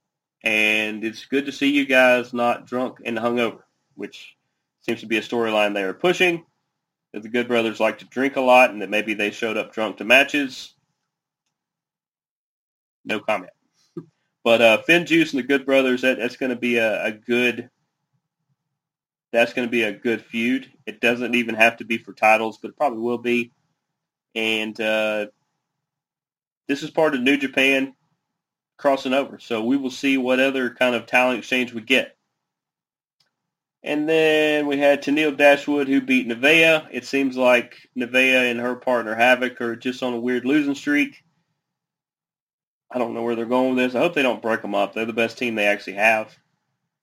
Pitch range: 115-155 Hz